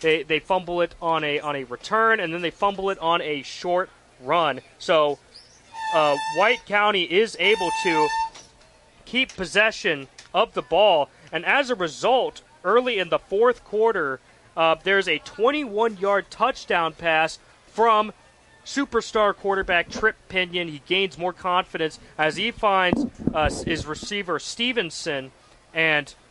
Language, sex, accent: English, male, American